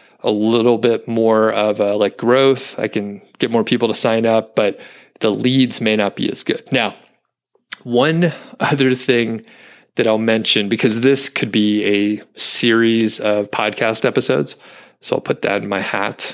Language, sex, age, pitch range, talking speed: English, male, 30-49, 105-125 Hz, 170 wpm